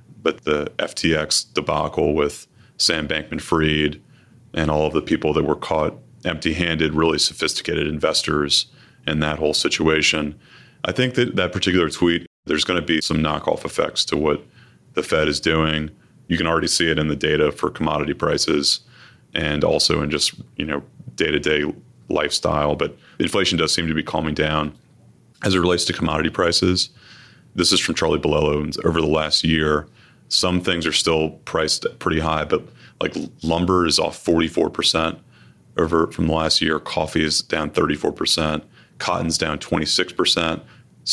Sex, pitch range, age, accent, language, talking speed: male, 75-90 Hz, 30-49, American, English, 165 wpm